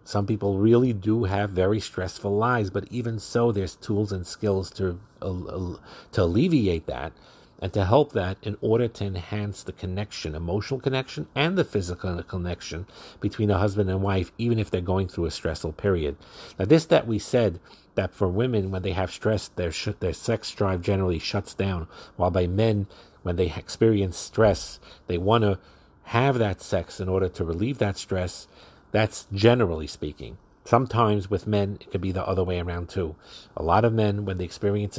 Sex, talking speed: male, 190 wpm